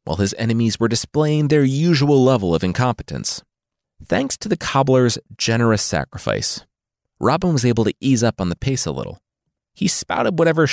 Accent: American